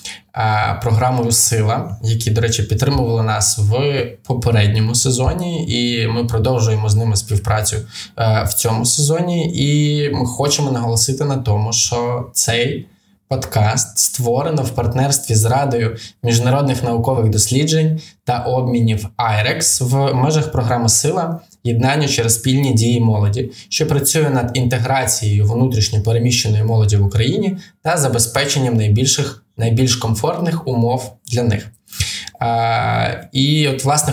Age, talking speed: 20-39, 120 wpm